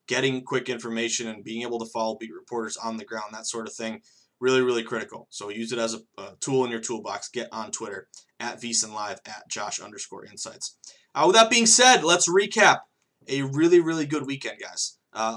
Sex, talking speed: male, 200 wpm